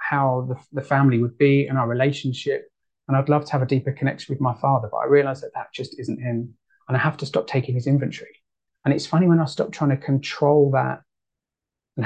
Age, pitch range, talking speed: 30-49, 125-140 Hz, 235 wpm